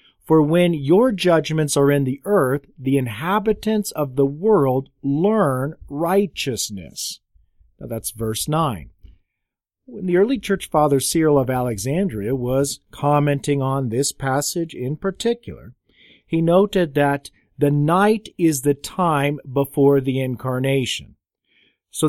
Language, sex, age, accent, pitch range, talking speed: English, male, 40-59, American, 130-165 Hz, 120 wpm